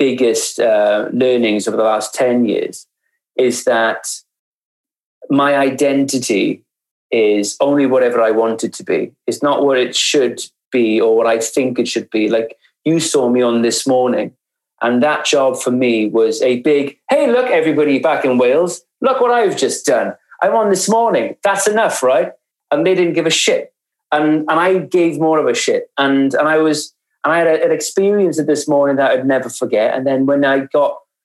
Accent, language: British, English